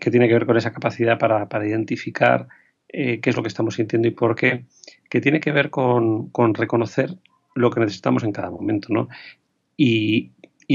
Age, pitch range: 40-59, 115-130 Hz